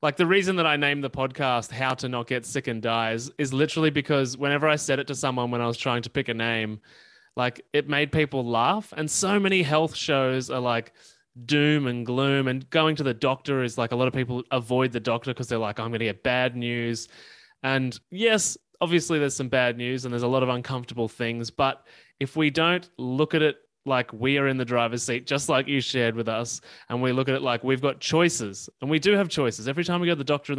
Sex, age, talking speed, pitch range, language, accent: male, 20-39, 245 wpm, 120-150 Hz, English, Australian